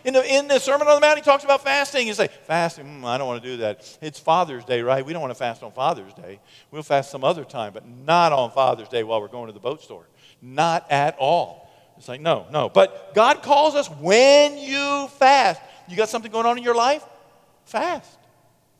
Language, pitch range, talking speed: English, 145-210 Hz, 230 wpm